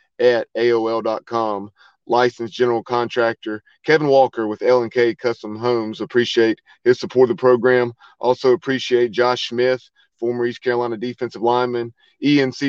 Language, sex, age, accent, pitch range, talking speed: English, male, 40-59, American, 115-130 Hz, 130 wpm